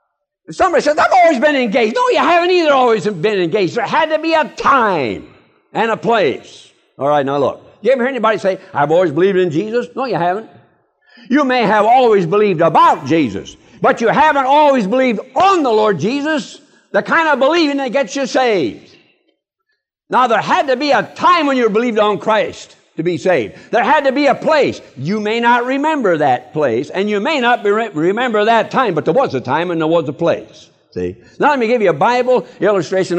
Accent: American